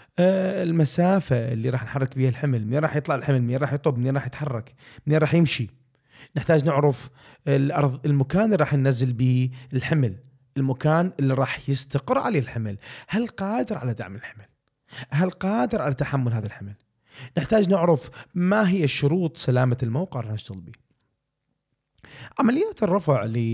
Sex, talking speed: male, 150 wpm